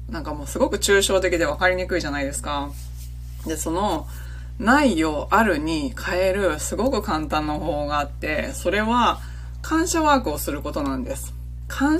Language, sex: Japanese, female